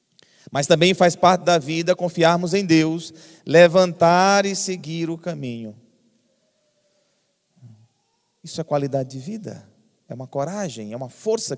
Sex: male